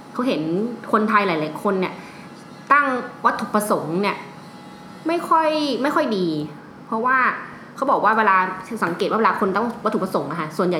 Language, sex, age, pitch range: Thai, female, 20-39, 185-235 Hz